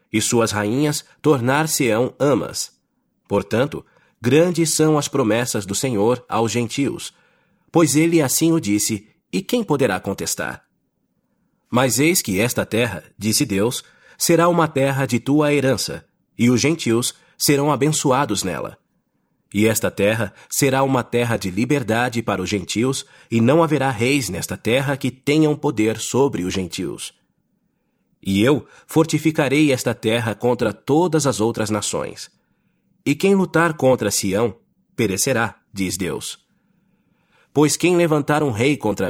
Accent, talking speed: Brazilian, 135 wpm